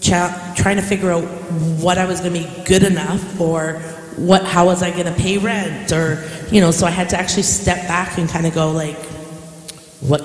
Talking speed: 210 wpm